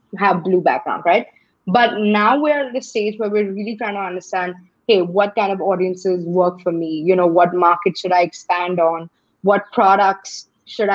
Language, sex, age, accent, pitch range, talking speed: English, female, 20-39, Indian, 180-230 Hz, 190 wpm